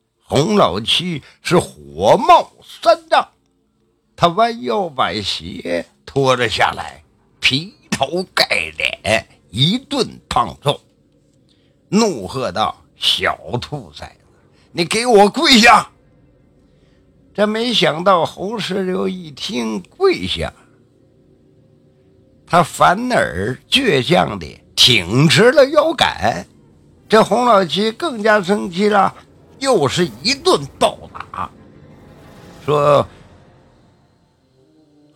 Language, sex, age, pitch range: Chinese, male, 50-69, 130-210 Hz